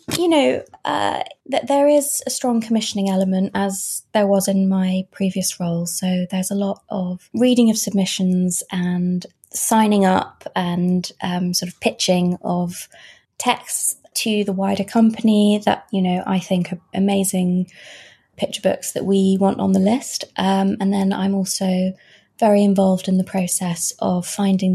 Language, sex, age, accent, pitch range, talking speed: English, female, 20-39, British, 180-200 Hz, 160 wpm